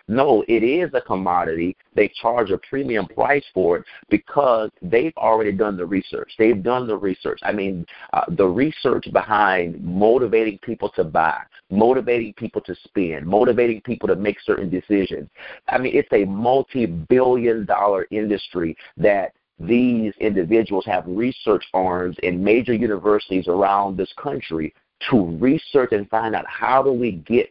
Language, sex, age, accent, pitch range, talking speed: English, male, 50-69, American, 95-120 Hz, 155 wpm